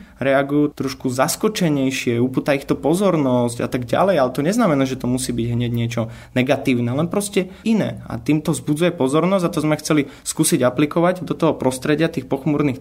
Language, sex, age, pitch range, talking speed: Slovak, male, 20-39, 120-150 Hz, 175 wpm